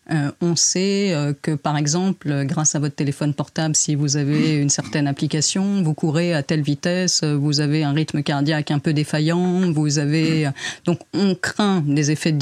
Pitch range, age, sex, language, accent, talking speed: 150-185 Hz, 40-59, female, French, French, 200 wpm